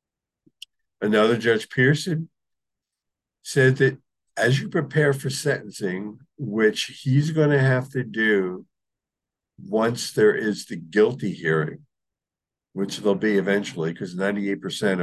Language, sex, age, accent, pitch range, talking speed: English, male, 60-79, American, 115-145 Hz, 120 wpm